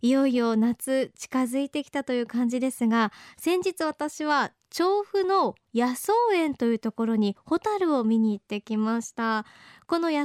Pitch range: 230-330 Hz